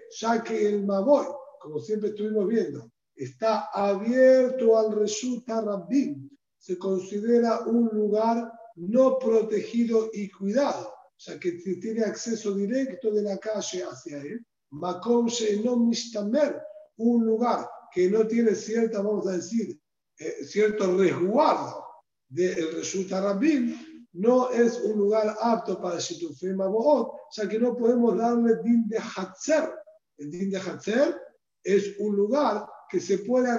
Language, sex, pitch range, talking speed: Spanish, male, 200-240 Hz, 125 wpm